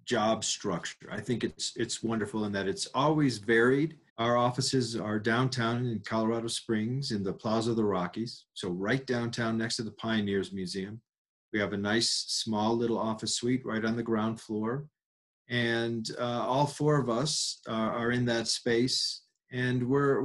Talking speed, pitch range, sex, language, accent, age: 175 wpm, 110-130 Hz, male, English, American, 40-59